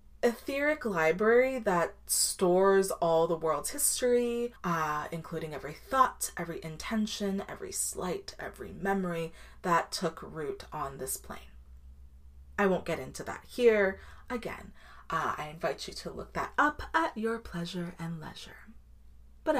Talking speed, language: 140 wpm, English